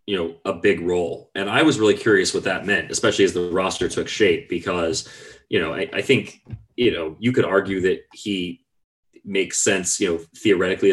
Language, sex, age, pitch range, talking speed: English, male, 30-49, 90-120 Hz, 205 wpm